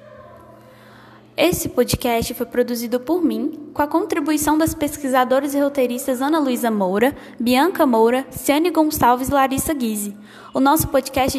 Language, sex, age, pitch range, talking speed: Portuguese, female, 10-29, 235-285 Hz, 135 wpm